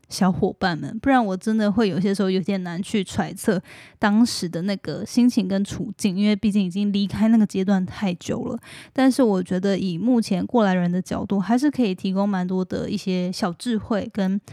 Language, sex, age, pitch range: Chinese, female, 10-29, 190-225 Hz